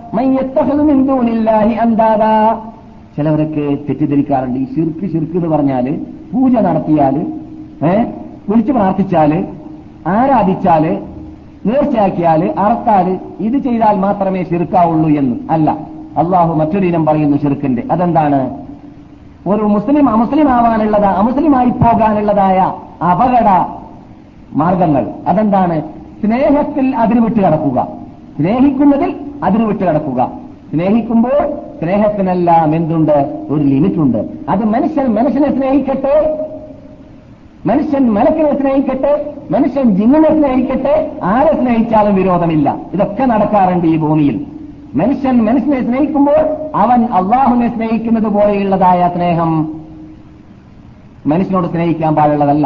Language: Malayalam